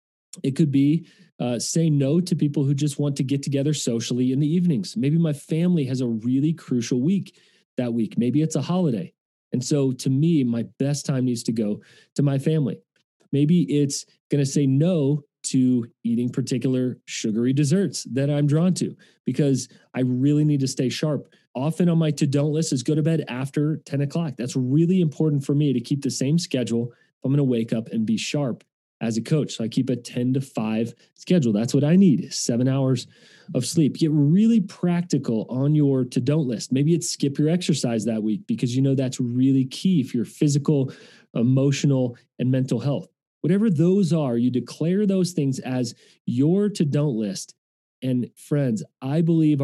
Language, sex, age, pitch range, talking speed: English, male, 30-49, 125-155 Hz, 190 wpm